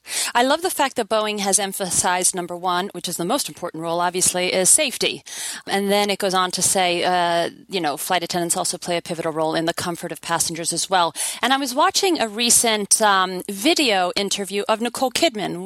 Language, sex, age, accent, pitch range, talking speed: English, female, 30-49, American, 190-240 Hz, 210 wpm